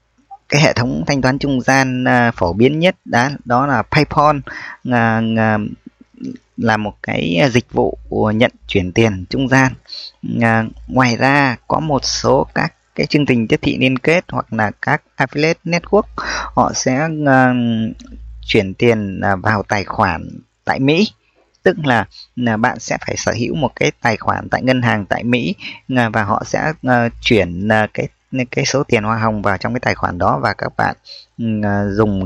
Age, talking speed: 20-39, 165 wpm